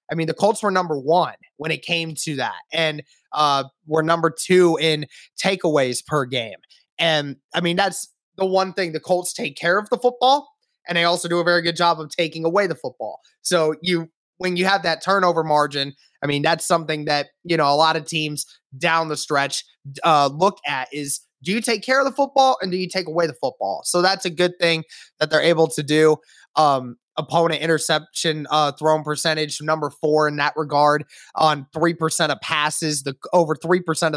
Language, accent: English, American